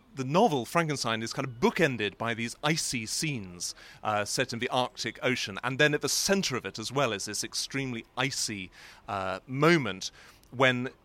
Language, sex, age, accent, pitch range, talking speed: English, male, 30-49, British, 110-145 Hz, 180 wpm